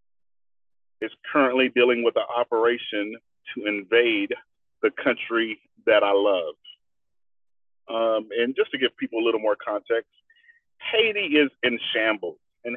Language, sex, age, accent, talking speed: English, male, 40-59, American, 130 wpm